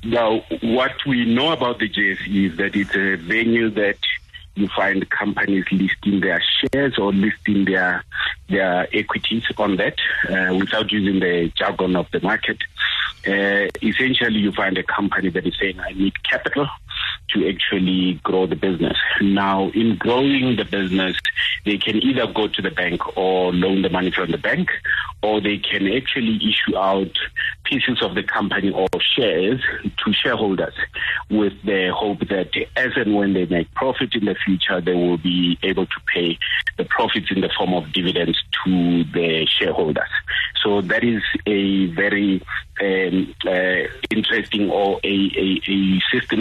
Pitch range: 90-105 Hz